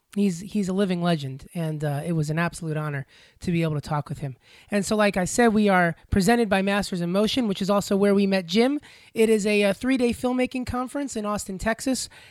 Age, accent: 30-49, American